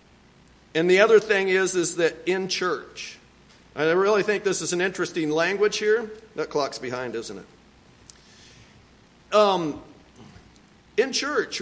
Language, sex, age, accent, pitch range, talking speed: English, male, 50-69, American, 170-230 Hz, 135 wpm